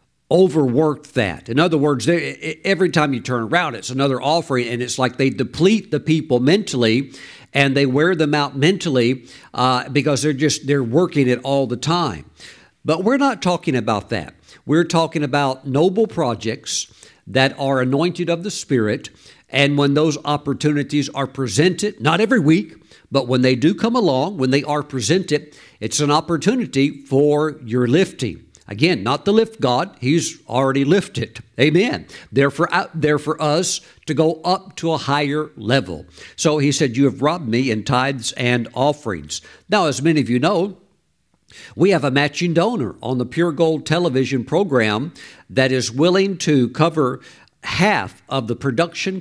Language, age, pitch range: English, 60-79, 130-165 Hz